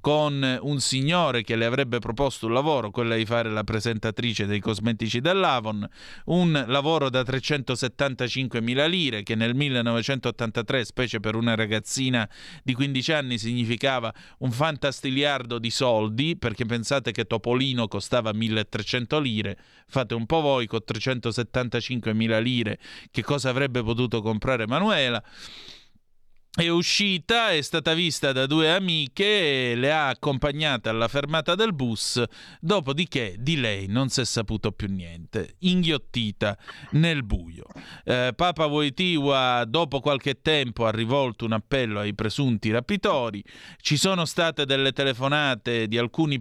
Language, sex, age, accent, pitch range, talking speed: Italian, male, 30-49, native, 115-145 Hz, 135 wpm